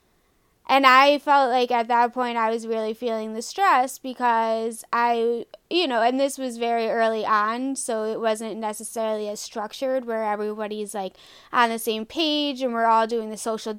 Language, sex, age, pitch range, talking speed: English, female, 20-39, 225-265 Hz, 185 wpm